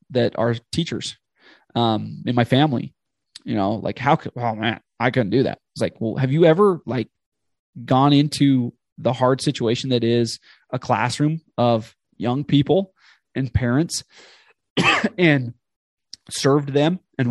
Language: English